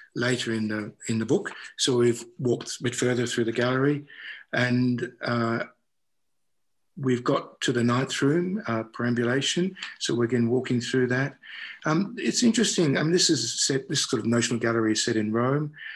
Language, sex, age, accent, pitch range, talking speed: English, male, 50-69, Australian, 115-135 Hz, 180 wpm